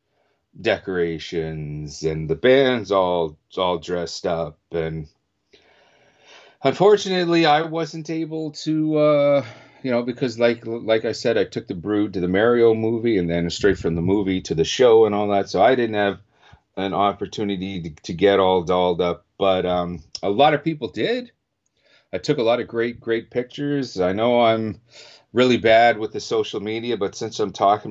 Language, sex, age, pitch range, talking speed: English, male, 40-59, 90-120 Hz, 175 wpm